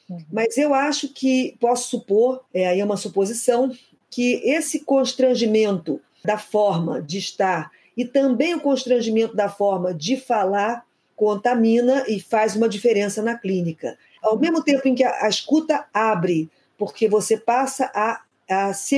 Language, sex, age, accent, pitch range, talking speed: Portuguese, female, 40-59, Brazilian, 195-255 Hz, 150 wpm